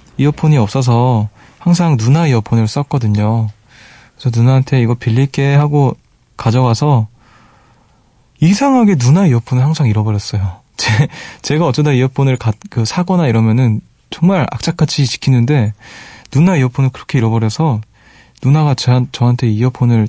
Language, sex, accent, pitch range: Korean, male, native, 110-145 Hz